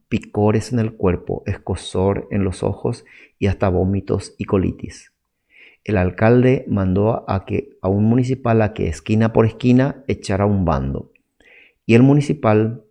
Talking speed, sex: 145 wpm, male